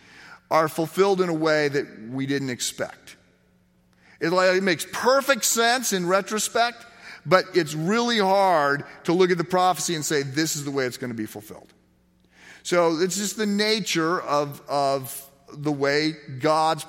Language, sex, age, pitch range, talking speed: English, male, 40-59, 130-185 Hz, 160 wpm